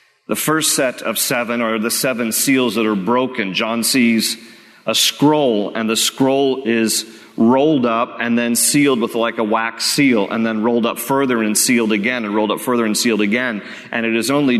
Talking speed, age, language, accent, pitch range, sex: 200 wpm, 40-59, English, American, 110-125 Hz, male